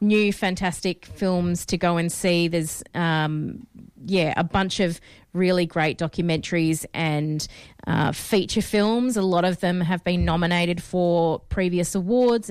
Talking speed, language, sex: 145 wpm, English, female